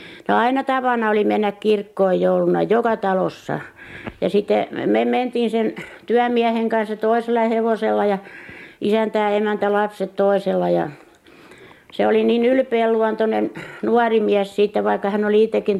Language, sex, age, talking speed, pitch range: Finnish, female, 60-79, 135 wpm, 185-225 Hz